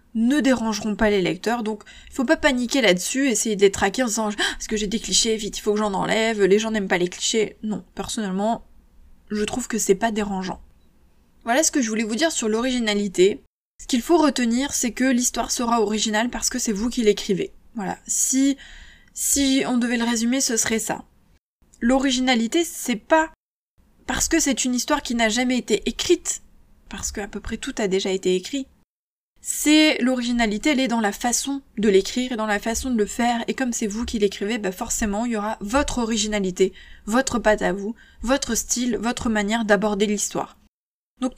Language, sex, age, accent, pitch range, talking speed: French, female, 20-39, French, 210-255 Hz, 205 wpm